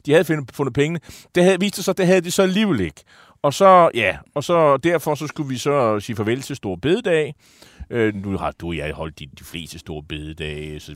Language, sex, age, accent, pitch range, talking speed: Danish, male, 30-49, native, 110-150 Hz, 220 wpm